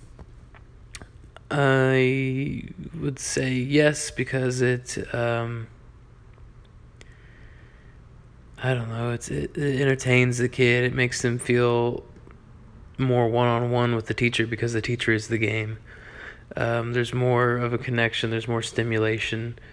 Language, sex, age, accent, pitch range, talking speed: English, male, 20-39, American, 110-125 Hz, 130 wpm